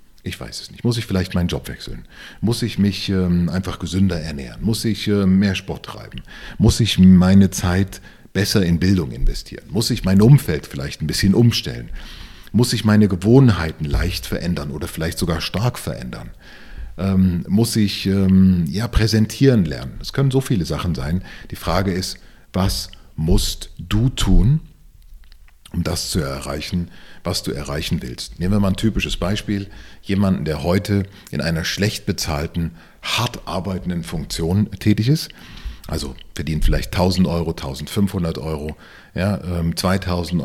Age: 40-59